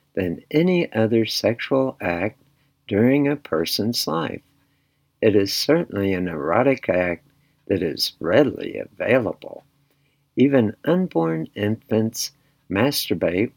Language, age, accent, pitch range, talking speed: English, 60-79, American, 95-140 Hz, 100 wpm